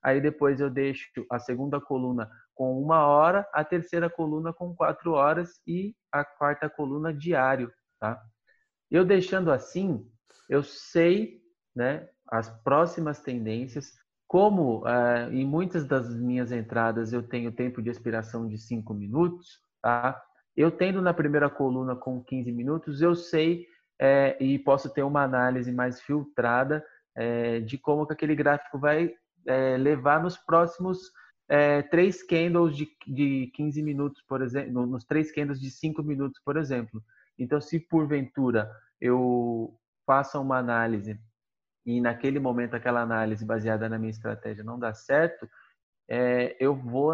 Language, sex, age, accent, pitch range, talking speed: Portuguese, male, 20-39, Brazilian, 125-155 Hz, 140 wpm